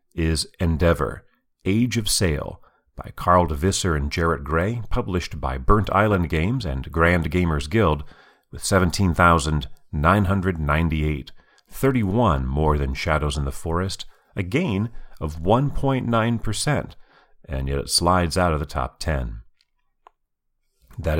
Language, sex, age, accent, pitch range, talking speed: English, male, 40-59, American, 75-100 Hz, 155 wpm